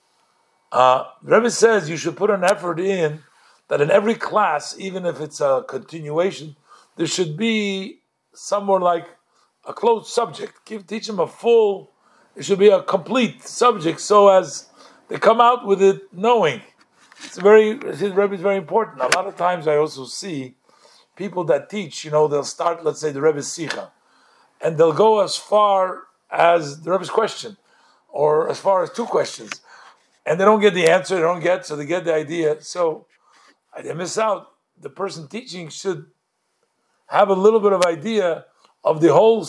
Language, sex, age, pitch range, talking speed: English, male, 50-69, 165-210 Hz, 180 wpm